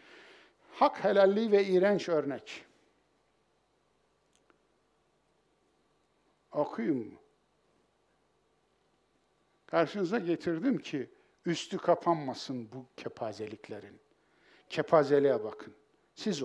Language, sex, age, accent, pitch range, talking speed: Turkish, male, 60-79, native, 145-215 Hz, 60 wpm